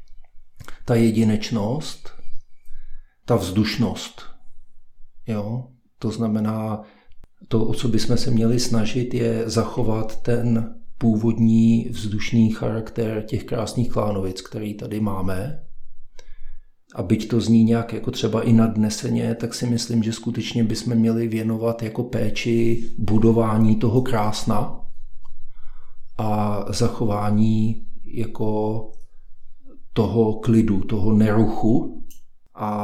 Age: 50-69